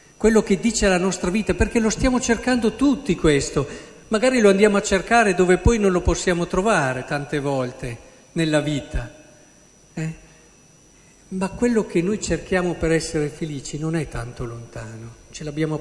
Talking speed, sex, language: 160 wpm, male, Italian